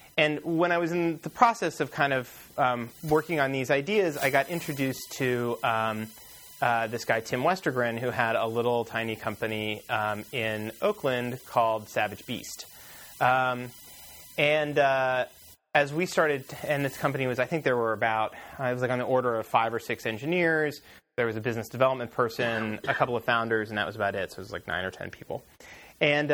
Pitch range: 110-145 Hz